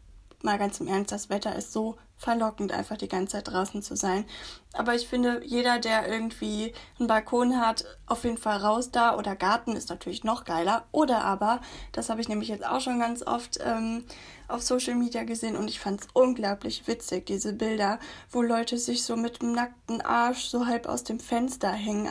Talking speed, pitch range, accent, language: 200 wpm, 215-260 Hz, German, German